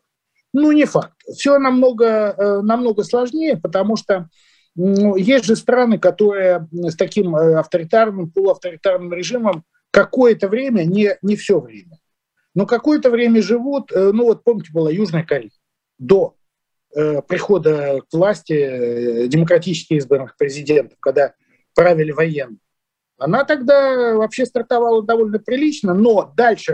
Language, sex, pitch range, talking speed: Russian, male, 175-240 Hz, 120 wpm